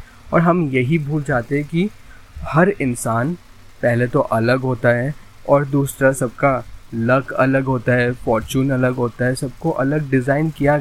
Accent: native